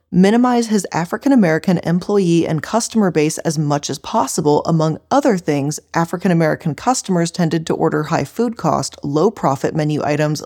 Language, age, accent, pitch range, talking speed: English, 20-39, American, 155-210 Hz, 150 wpm